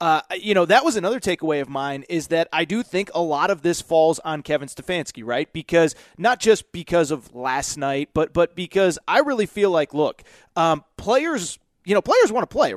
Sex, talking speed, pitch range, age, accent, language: male, 215 wpm, 155-220 Hz, 30-49, American, English